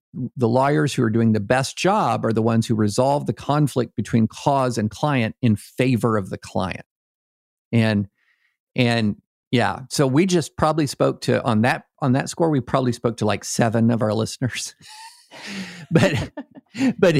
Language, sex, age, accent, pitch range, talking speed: English, male, 50-69, American, 115-160 Hz, 170 wpm